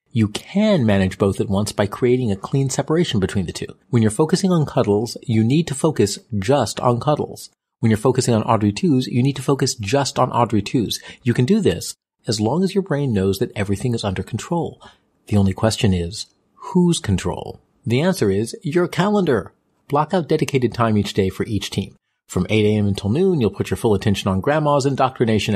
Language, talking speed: English, 205 wpm